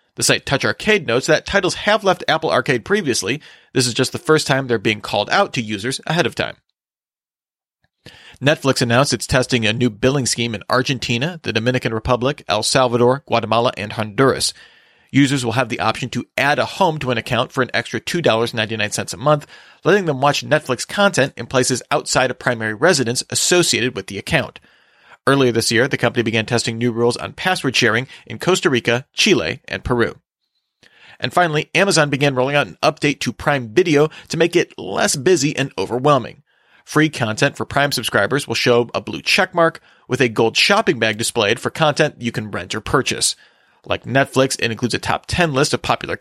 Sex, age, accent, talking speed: male, 40-59, American, 190 wpm